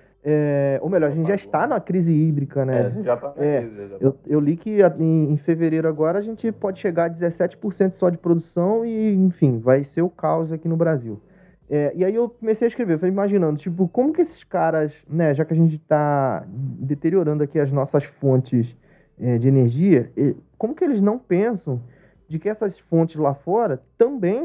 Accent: Brazilian